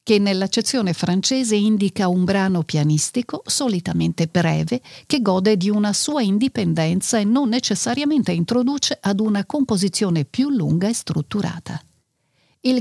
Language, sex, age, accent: Italian, female, 50-69, native